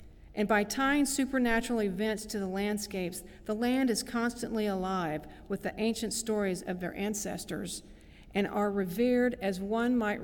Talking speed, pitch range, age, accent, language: 150 wpm, 170-215 Hz, 50-69, American, English